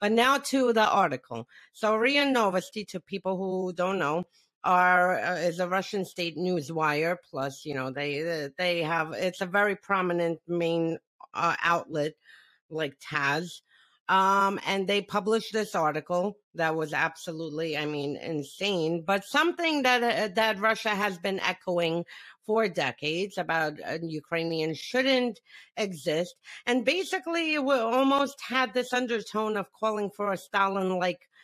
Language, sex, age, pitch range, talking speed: English, female, 40-59, 165-220 Hz, 145 wpm